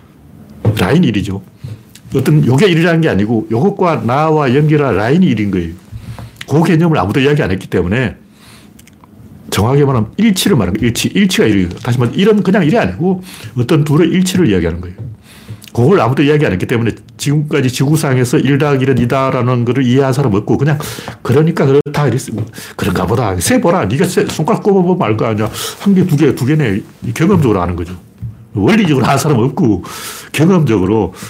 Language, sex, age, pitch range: Korean, male, 60-79, 110-155 Hz